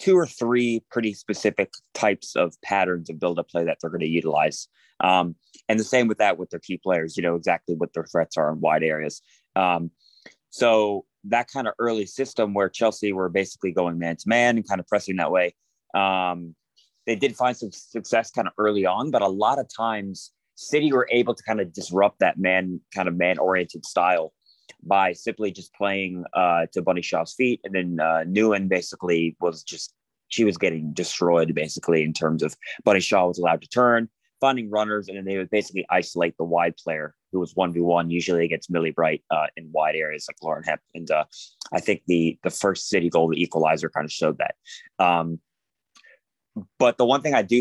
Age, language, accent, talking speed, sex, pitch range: 30-49, English, American, 210 wpm, male, 85-110 Hz